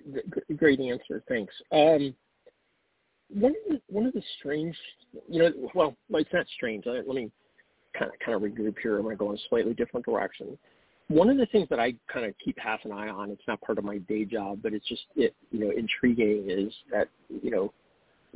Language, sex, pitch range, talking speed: English, male, 105-145 Hz, 205 wpm